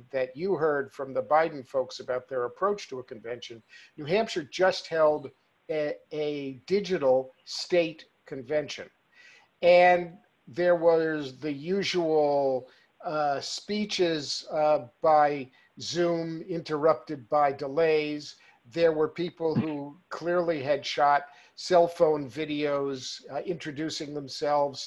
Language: English